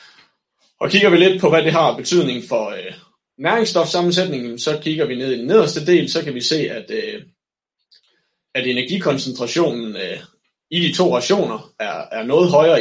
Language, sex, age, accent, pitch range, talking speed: Danish, male, 30-49, native, 125-180 Hz, 175 wpm